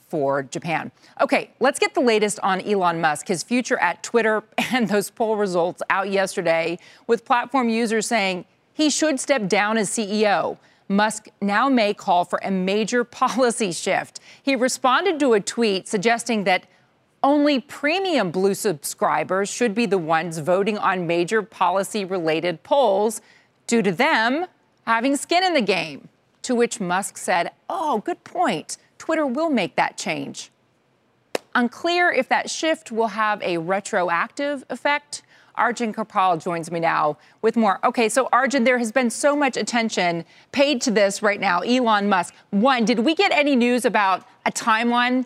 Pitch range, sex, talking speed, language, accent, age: 195-265 Hz, female, 160 wpm, English, American, 40-59